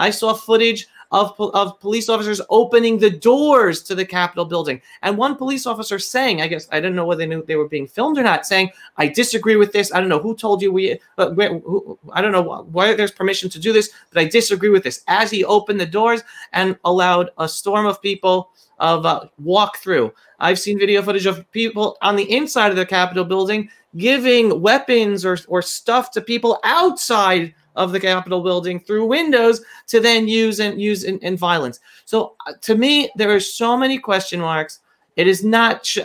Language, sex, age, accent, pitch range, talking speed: English, male, 30-49, American, 180-225 Hz, 210 wpm